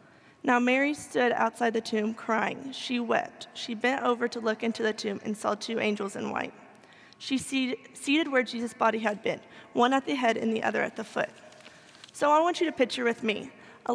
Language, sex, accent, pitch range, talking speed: English, female, American, 225-260 Hz, 210 wpm